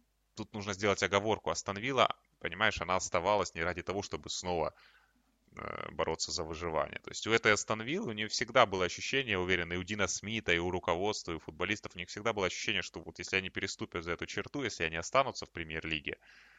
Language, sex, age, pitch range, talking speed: Russian, male, 20-39, 90-105 Hz, 205 wpm